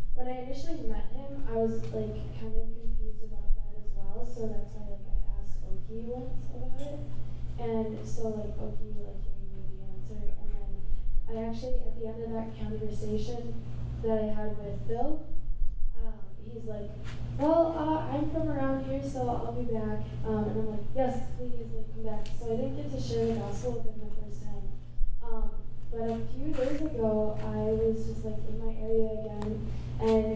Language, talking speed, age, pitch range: English, 195 wpm, 10-29, 110-120 Hz